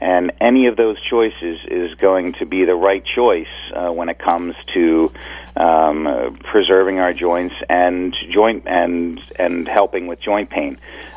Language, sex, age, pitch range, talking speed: English, male, 40-59, 85-110 Hz, 165 wpm